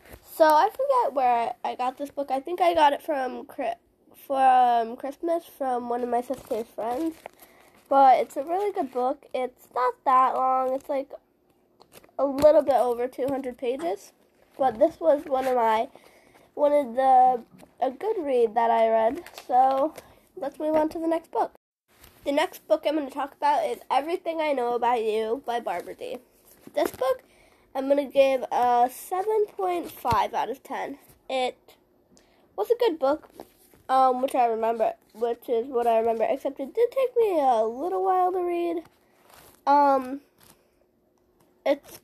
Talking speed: 165 wpm